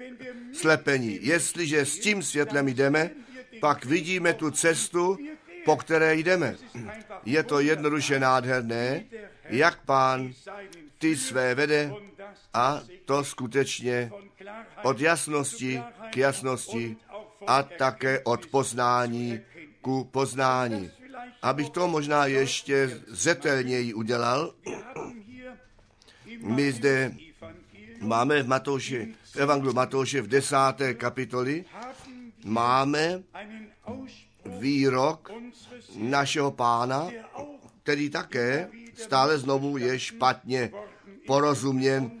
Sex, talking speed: male, 90 wpm